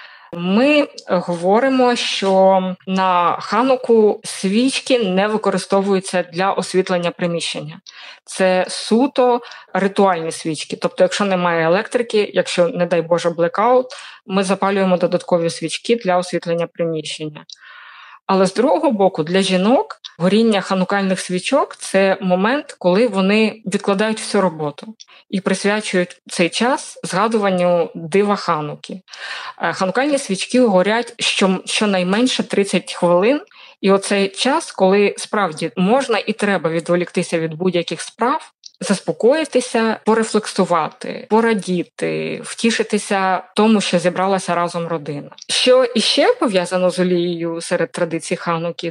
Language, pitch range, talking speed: Ukrainian, 175-225 Hz, 110 wpm